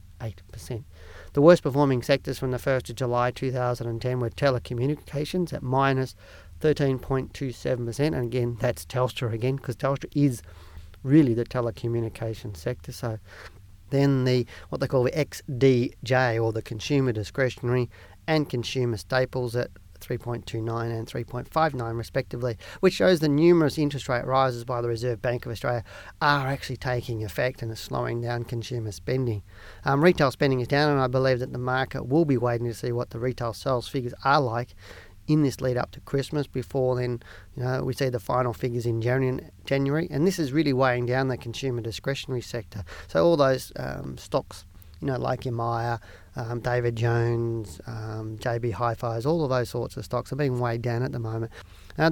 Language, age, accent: English, 40-59, Australian